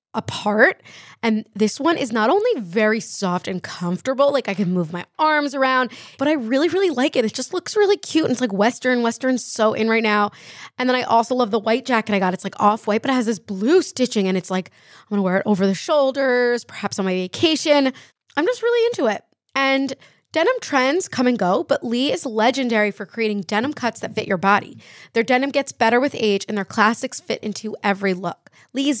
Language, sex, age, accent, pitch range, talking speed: English, female, 20-39, American, 200-260 Hz, 225 wpm